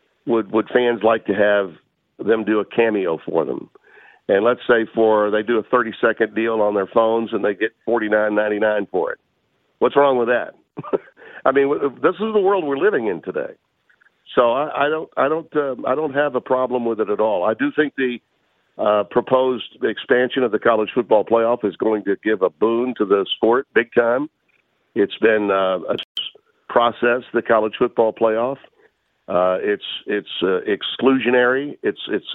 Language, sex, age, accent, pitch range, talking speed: English, male, 50-69, American, 110-155 Hz, 190 wpm